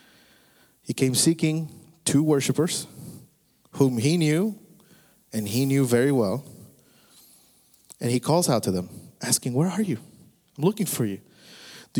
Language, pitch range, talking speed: English, 120-160 Hz, 140 wpm